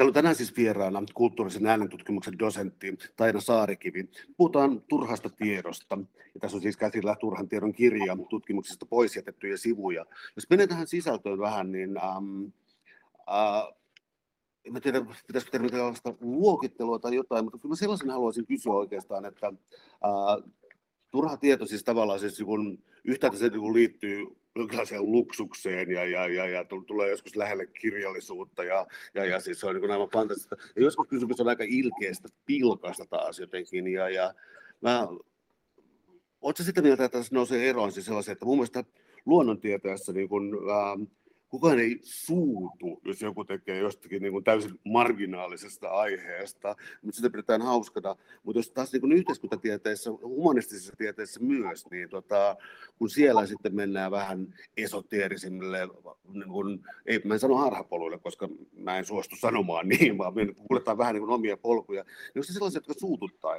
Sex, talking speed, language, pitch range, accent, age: male, 135 wpm, Finnish, 100-125 Hz, native, 50-69